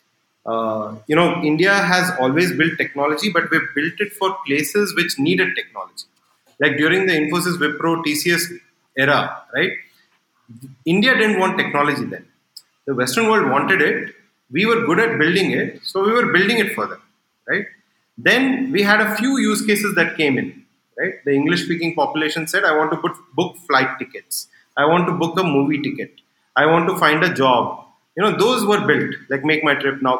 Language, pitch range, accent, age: English, 150-205 Hz, Indian, 30-49